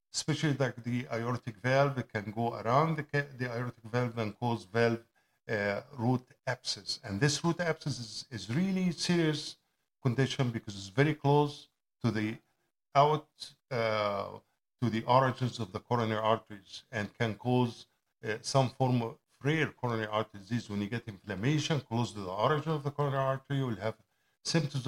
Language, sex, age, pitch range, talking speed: English, male, 50-69, 110-135 Hz, 170 wpm